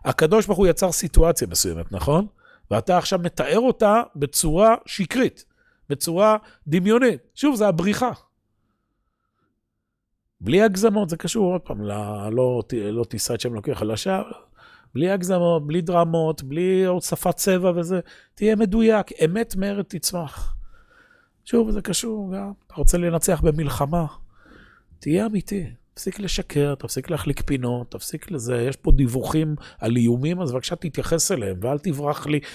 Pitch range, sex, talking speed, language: 125-185 Hz, male, 135 wpm, Hebrew